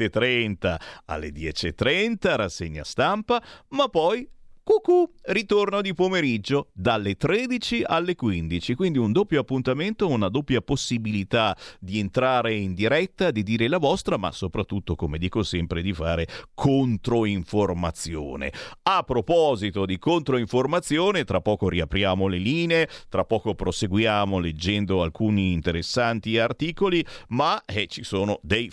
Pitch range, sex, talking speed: 95-135 Hz, male, 125 wpm